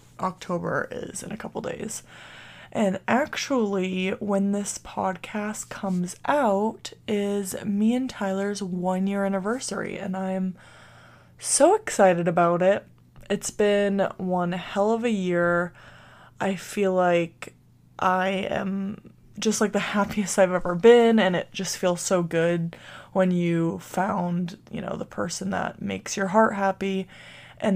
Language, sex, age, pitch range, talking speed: English, female, 20-39, 185-205 Hz, 140 wpm